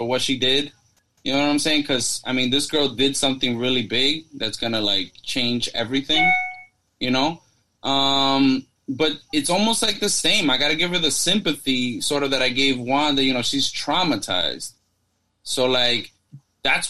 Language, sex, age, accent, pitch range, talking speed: English, male, 20-39, American, 120-150 Hz, 185 wpm